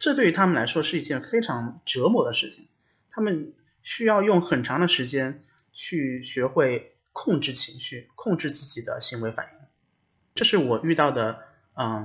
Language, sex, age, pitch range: Chinese, male, 30-49, 130-190 Hz